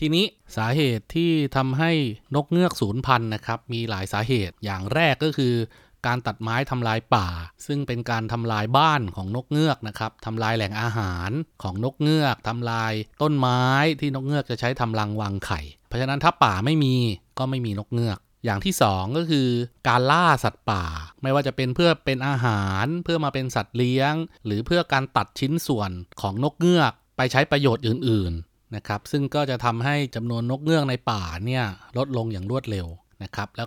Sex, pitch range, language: male, 105-140 Hz, Thai